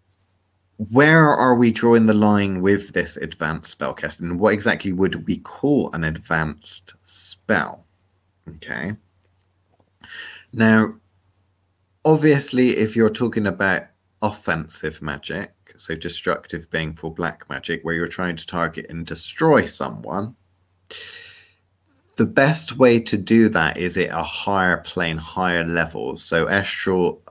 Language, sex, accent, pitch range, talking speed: English, male, British, 90-115 Hz, 125 wpm